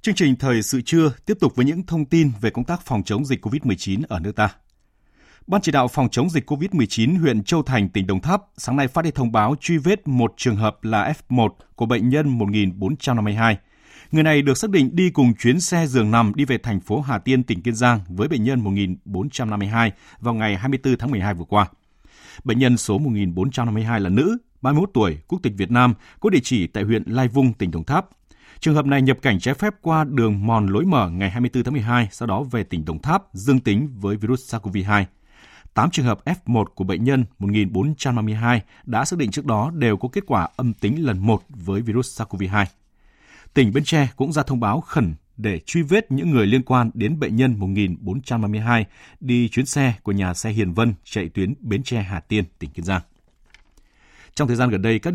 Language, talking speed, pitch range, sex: Vietnamese, 215 wpm, 105-135 Hz, male